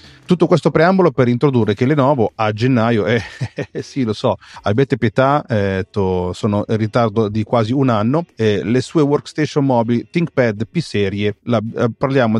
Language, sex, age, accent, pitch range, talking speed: Italian, male, 30-49, native, 110-145 Hz, 165 wpm